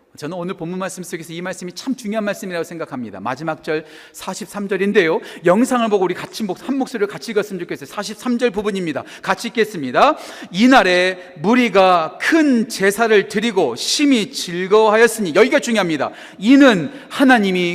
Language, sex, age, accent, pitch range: Korean, male, 40-59, native, 180-280 Hz